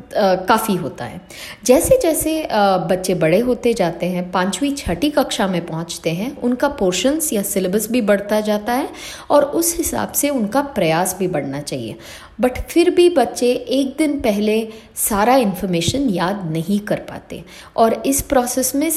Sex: female